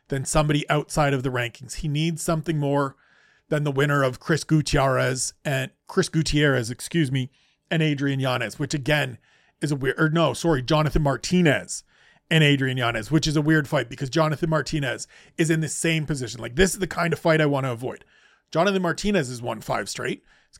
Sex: male